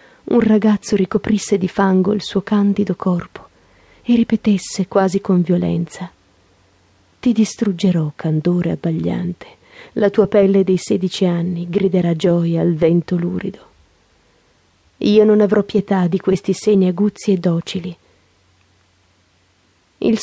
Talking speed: 120 wpm